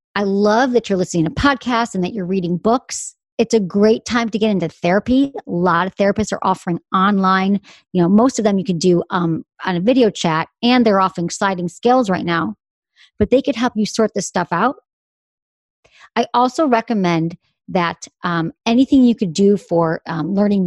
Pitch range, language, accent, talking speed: 185-230 Hz, English, American, 195 wpm